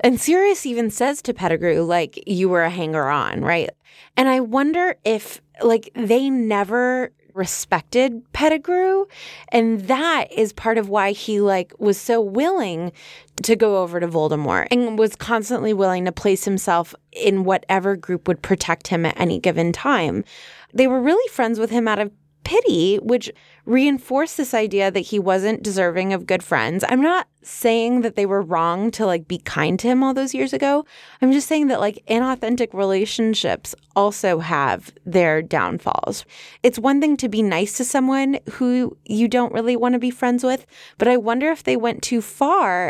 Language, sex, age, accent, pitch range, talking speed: English, female, 20-39, American, 185-250 Hz, 180 wpm